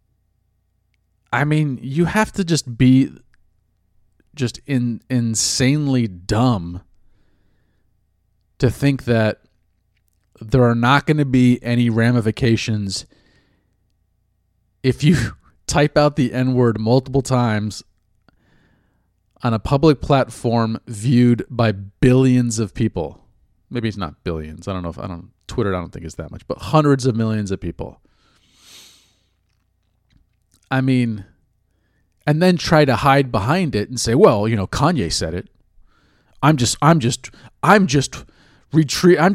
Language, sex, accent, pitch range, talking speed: English, male, American, 95-130 Hz, 135 wpm